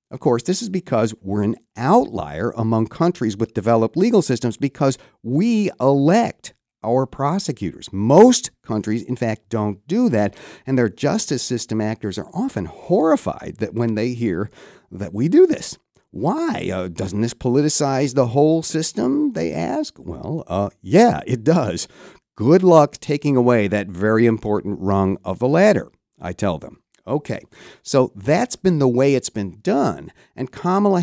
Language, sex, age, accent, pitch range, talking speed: English, male, 50-69, American, 110-170 Hz, 160 wpm